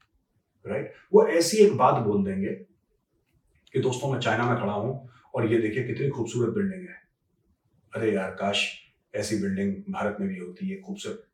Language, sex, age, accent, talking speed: Hindi, male, 40-59, native, 165 wpm